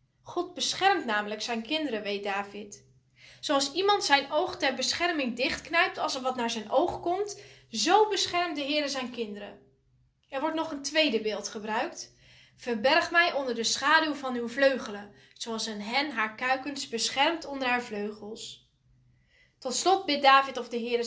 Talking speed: 165 wpm